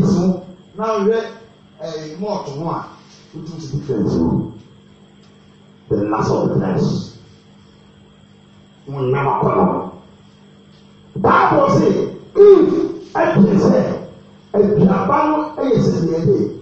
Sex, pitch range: male, 175-225 Hz